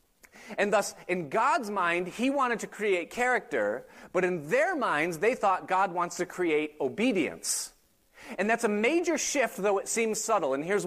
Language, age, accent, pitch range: English, 30-49, American, 185-245 Hz